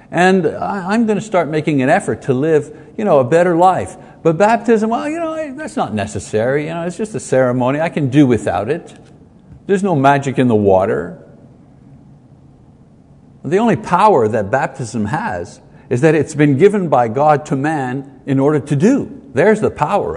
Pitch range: 130-185 Hz